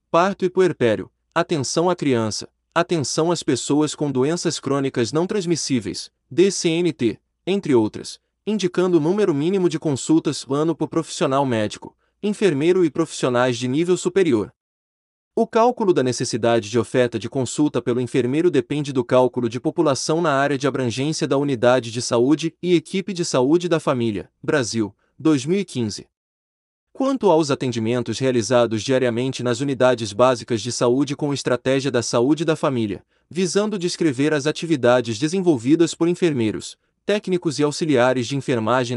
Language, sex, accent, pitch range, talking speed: Portuguese, male, Brazilian, 125-170 Hz, 140 wpm